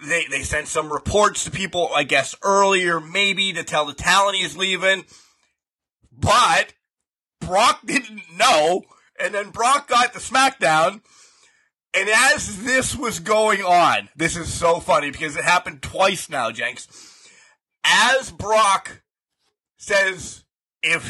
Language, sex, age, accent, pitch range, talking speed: English, male, 30-49, American, 165-250 Hz, 135 wpm